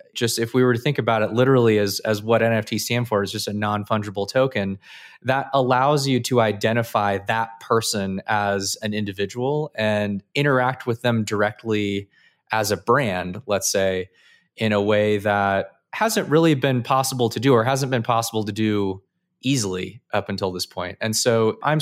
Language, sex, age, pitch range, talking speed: English, male, 20-39, 105-125 Hz, 175 wpm